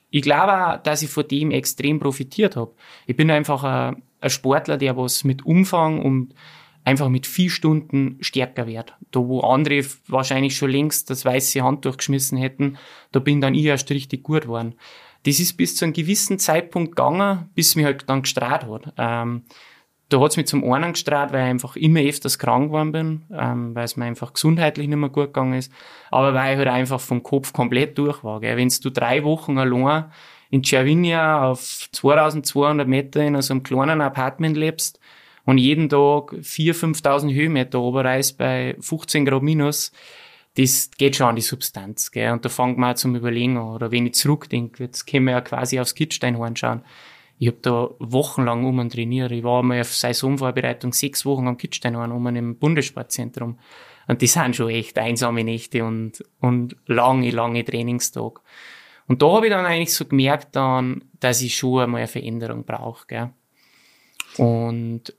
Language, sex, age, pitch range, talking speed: German, male, 20-39, 125-150 Hz, 180 wpm